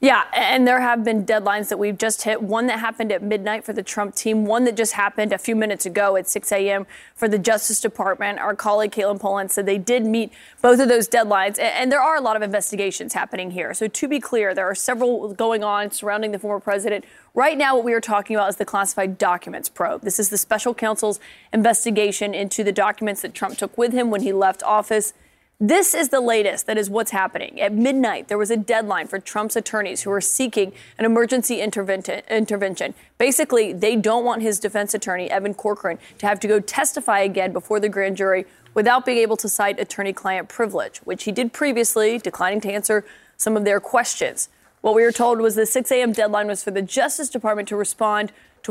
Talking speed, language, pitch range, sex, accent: 215 wpm, English, 200-230 Hz, female, American